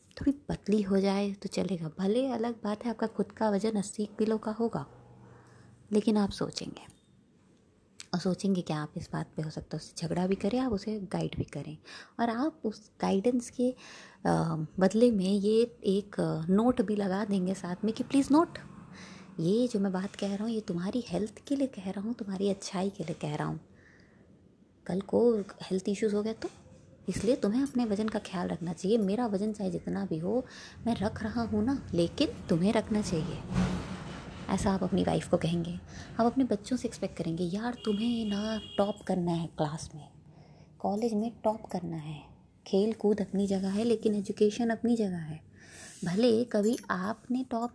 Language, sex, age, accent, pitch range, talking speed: Hindi, female, 20-39, native, 185-225 Hz, 185 wpm